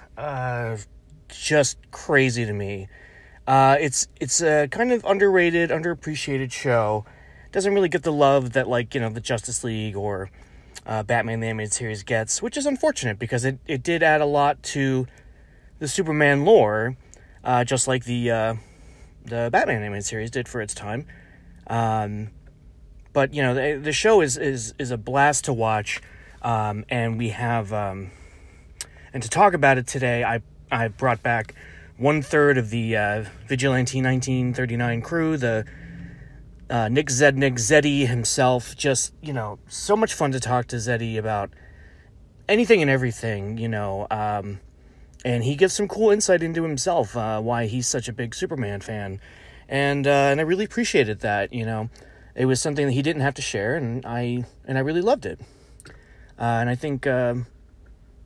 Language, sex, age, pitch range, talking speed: English, male, 30-49, 110-140 Hz, 175 wpm